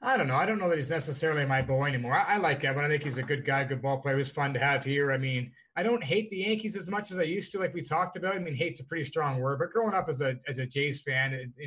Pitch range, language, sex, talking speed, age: 135-185 Hz, English, male, 330 wpm, 30-49